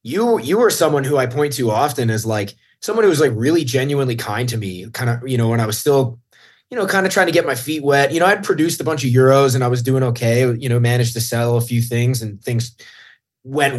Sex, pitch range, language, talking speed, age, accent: male, 115-140 Hz, English, 270 wpm, 20-39, American